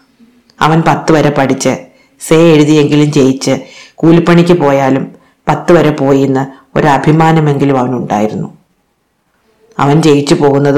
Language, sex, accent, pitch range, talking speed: Malayalam, female, native, 135-155 Hz, 100 wpm